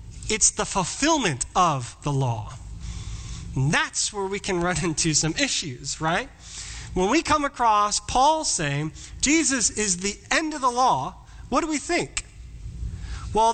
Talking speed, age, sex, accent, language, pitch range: 150 wpm, 30-49, male, American, English, 140-220 Hz